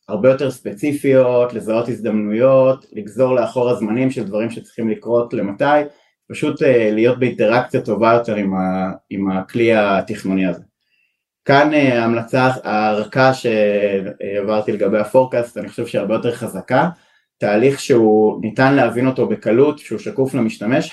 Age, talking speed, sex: 30-49, 125 wpm, male